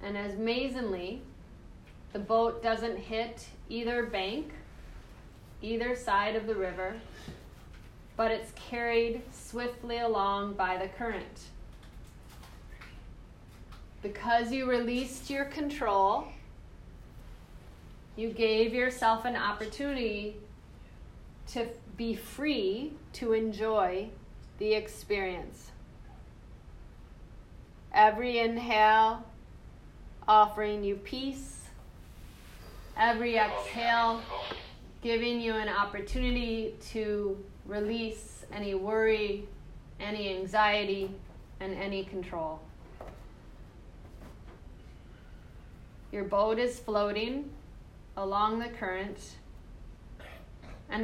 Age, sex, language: 30-49, female, English